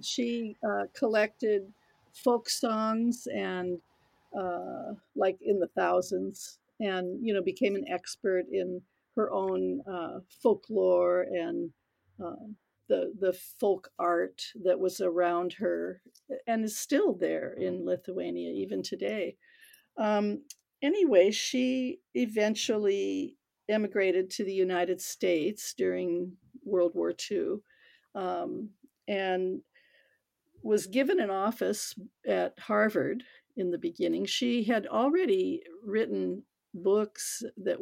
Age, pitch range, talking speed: 50-69, 180-235 Hz, 110 wpm